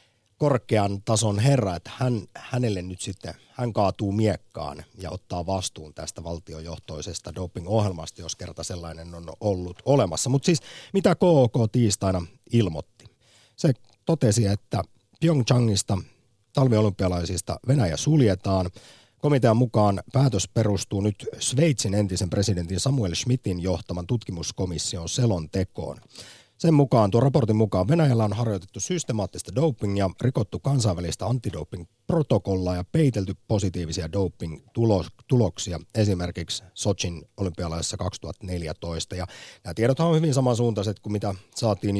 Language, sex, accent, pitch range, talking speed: Finnish, male, native, 90-120 Hz, 115 wpm